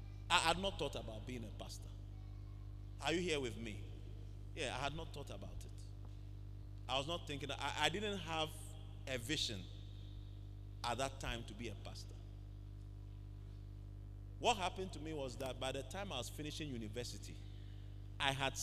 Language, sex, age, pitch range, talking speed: English, male, 30-49, 100-120 Hz, 170 wpm